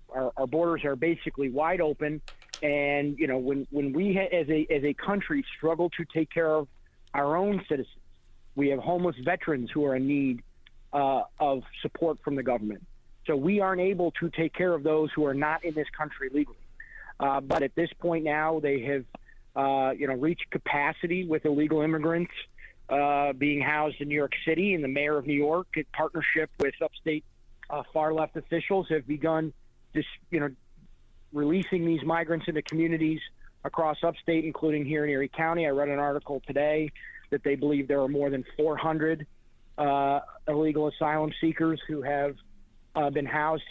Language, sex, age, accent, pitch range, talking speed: English, male, 40-59, American, 145-165 Hz, 180 wpm